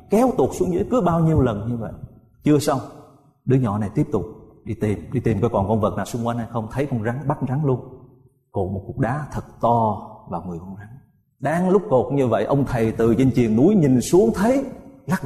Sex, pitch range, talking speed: male, 110-150 Hz, 240 wpm